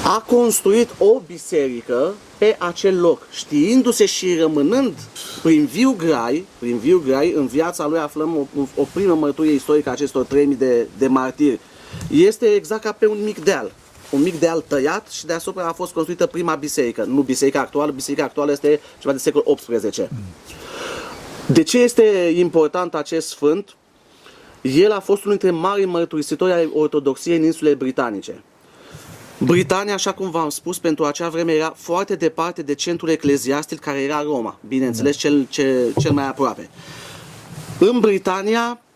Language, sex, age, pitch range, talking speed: Romanian, male, 30-49, 145-200 Hz, 155 wpm